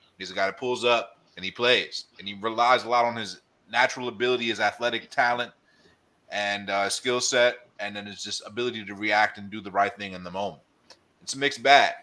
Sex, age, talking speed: male, 30-49, 220 wpm